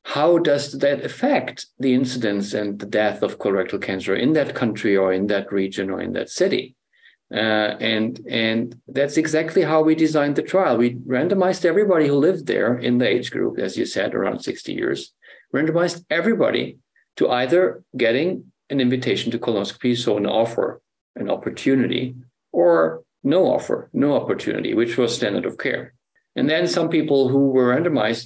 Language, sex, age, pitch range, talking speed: English, male, 50-69, 115-155 Hz, 170 wpm